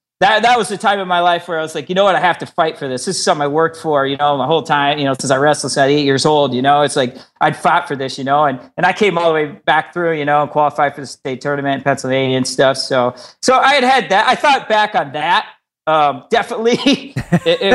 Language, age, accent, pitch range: English, 40-59, American, 150-210 Hz